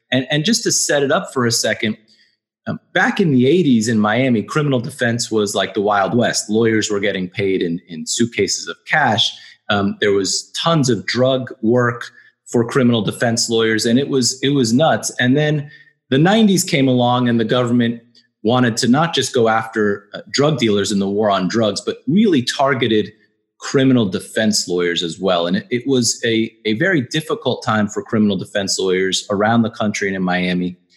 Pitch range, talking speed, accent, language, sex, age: 105-130 Hz, 190 wpm, American, English, male, 30-49